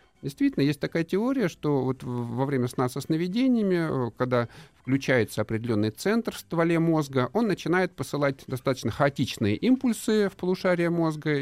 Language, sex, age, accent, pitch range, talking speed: Russian, male, 50-69, native, 120-165 Hz, 140 wpm